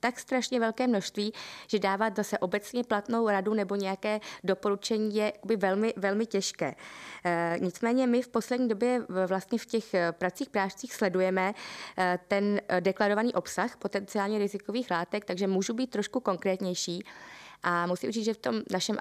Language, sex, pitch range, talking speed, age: Czech, female, 185-215 Hz, 145 wpm, 20-39